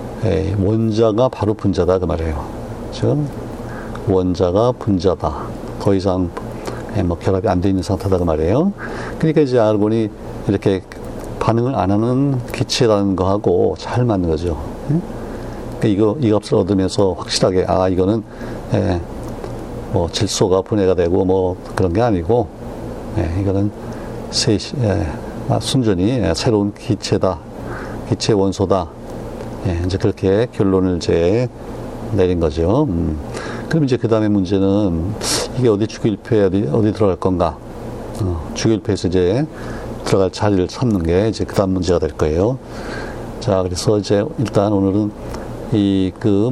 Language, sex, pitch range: Korean, male, 95-115 Hz